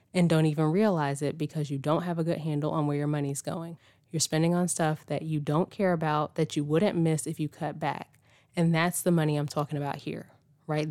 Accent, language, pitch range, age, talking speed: American, English, 145-170 Hz, 20-39, 235 wpm